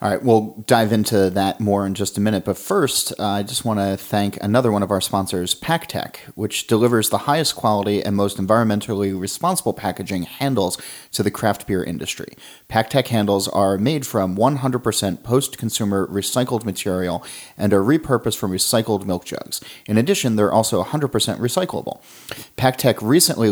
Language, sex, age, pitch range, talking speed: English, male, 30-49, 100-120 Hz, 165 wpm